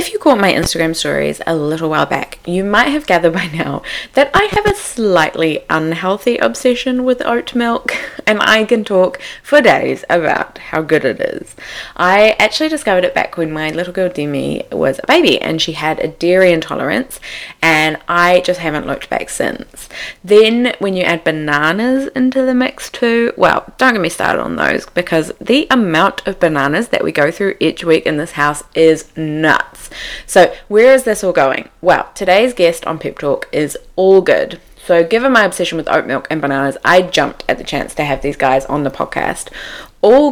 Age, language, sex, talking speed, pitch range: 20-39, English, female, 195 wpm, 160-235 Hz